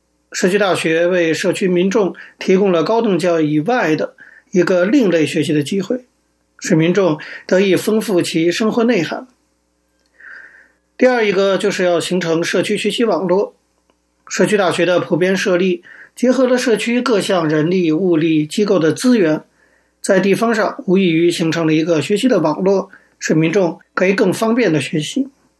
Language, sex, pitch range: Chinese, male, 160-205 Hz